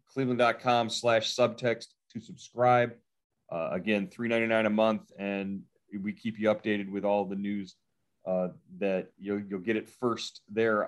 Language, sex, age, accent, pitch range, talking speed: English, male, 30-49, American, 100-125 Hz, 155 wpm